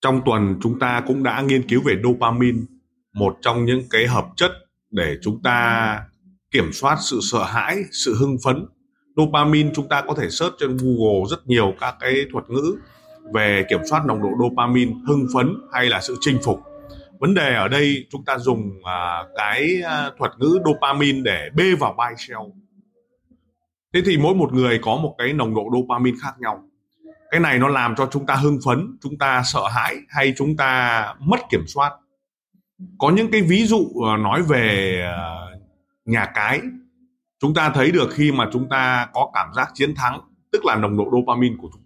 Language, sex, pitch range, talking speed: Vietnamese, male, 120-150 Hz, 185 wpm